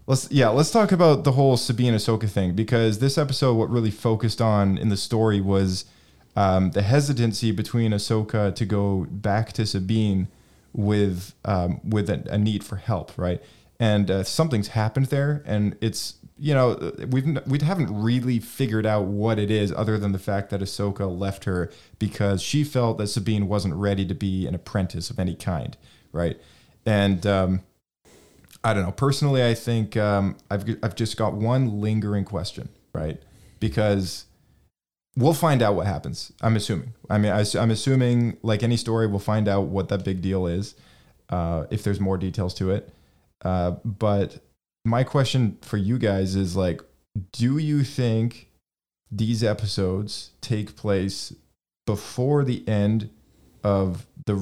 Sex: male